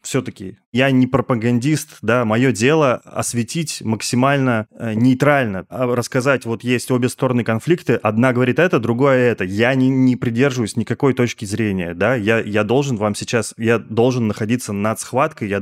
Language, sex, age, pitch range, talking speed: Russian, male, 20-39, 110-130 Hz, 160 wpm